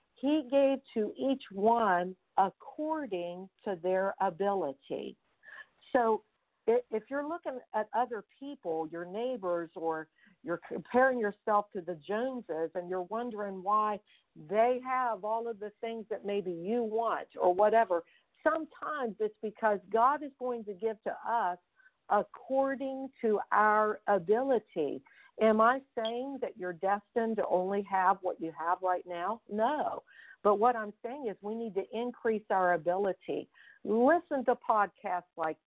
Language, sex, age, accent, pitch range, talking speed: English, female, 50-69, American, 185-240 Hz, 145 wpm